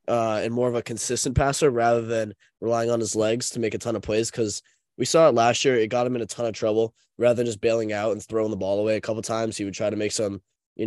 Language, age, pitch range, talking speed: English, 20-39, 105-120 Hz, 300 wpm